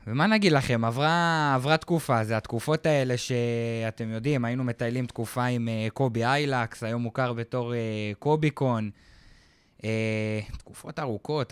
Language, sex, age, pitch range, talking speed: Hebrew, male, 20-39, 110-140 Hz, 120 wpm